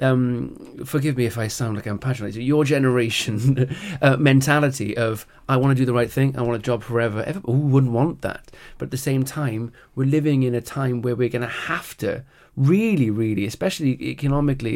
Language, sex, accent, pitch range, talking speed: English, male, British, 110-140 Hz, 205 wpm